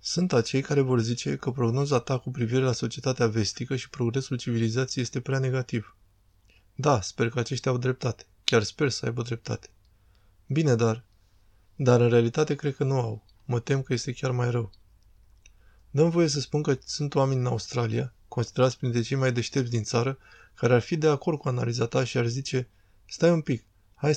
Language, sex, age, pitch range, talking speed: Romanian, male, 20-39, 115-130 Hz, 190 wpm